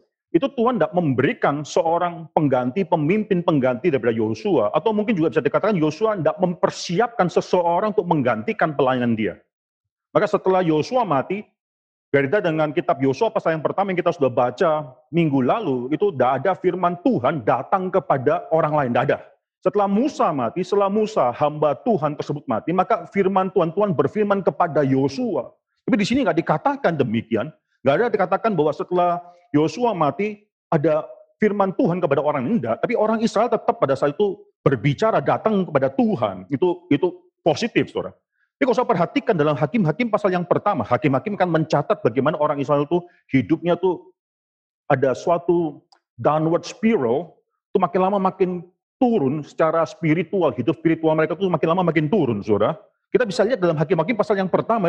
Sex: male